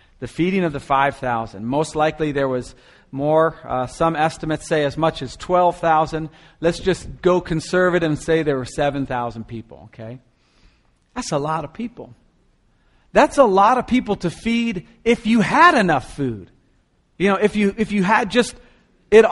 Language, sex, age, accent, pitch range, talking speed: English, male, 40-59, American, 155-225 Hz, 175 wpm